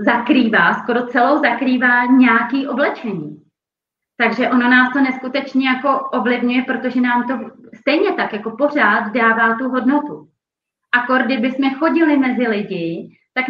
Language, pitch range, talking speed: Czech, 225-275 Hz, 130 wpm